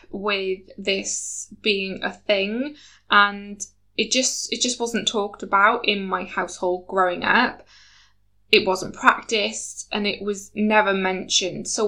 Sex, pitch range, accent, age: female, 190-230 Hz, British, 10-29